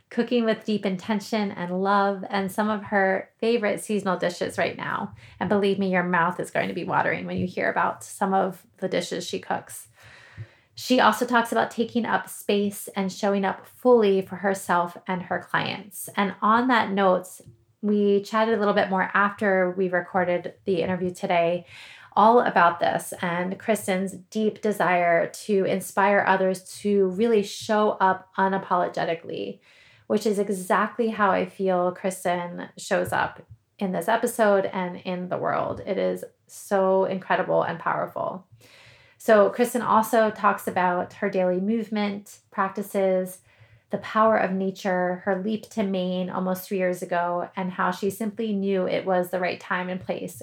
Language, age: English, 20-39